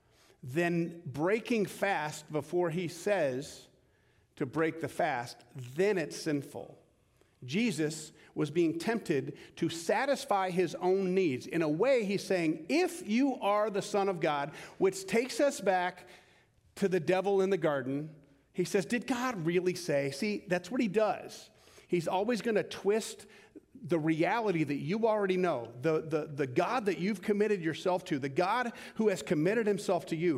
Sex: male